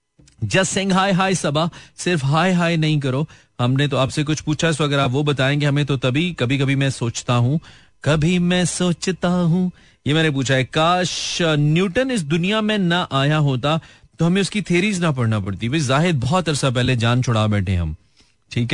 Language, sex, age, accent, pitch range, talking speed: Hindi, male, 30-49, native, 115-170 Hz, 95 wpm